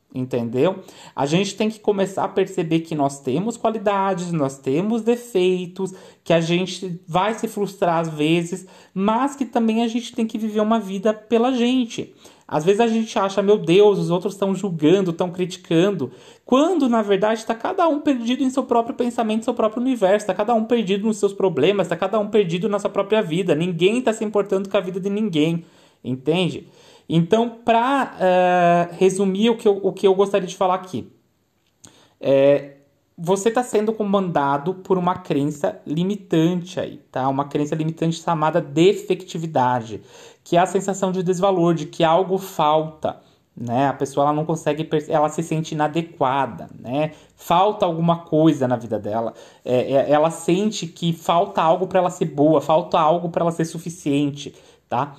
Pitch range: 160-210 Hz